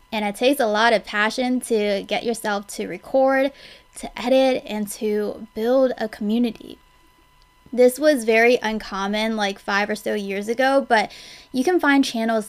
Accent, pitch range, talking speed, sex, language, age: American, 210-255 Hz, 165 wpm, female, English, 20-39